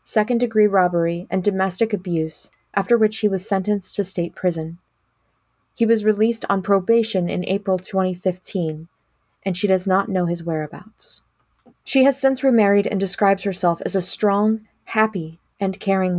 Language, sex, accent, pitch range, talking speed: English, female, American, 180-215 Hz, 150 wpm